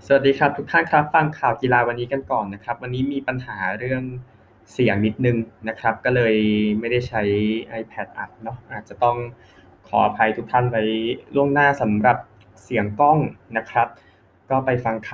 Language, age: Thai, 20-39